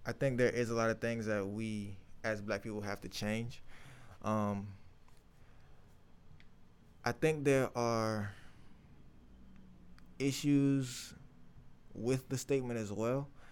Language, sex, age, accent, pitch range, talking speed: English, male, 20-39, American, 100-125 Hz, 120 wpm